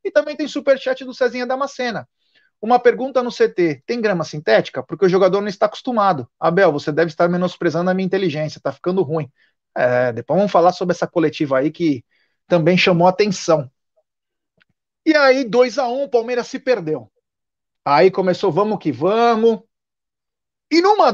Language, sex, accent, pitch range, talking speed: Portuguese, male, Brazilian, 170-250 Hz, 160 wpm